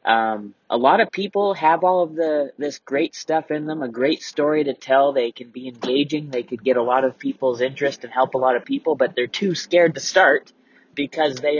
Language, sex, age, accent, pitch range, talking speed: English, male, 20-39, American, 120-160 Hz, 235 wpm